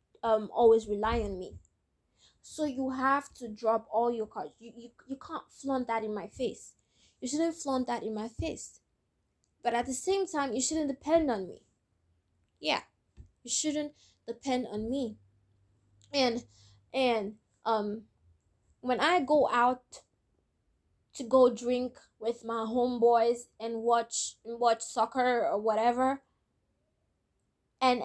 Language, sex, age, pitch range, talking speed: English, female, 20-39, 225-265 Hz, 140 wpm